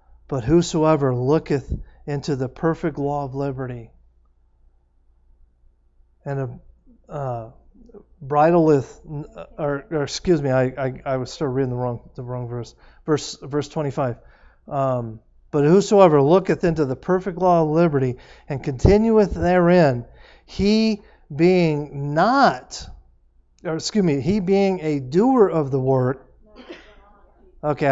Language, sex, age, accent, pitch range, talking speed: English, male, 40-59, American, 125-165 Hz, 120 wpm